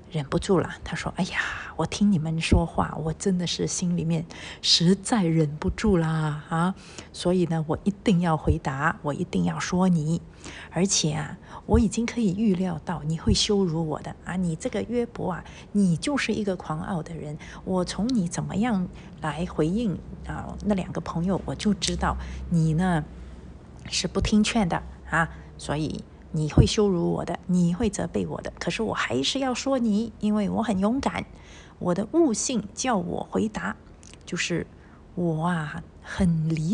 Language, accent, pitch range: Chinese, native, 160-215 Hz